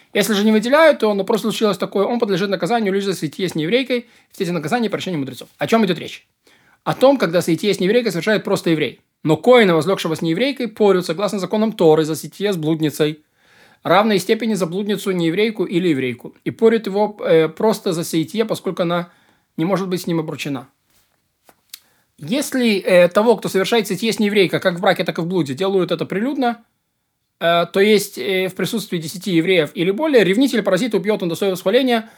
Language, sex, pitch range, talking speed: Russian, male, 170-215 Hz, 195 wpm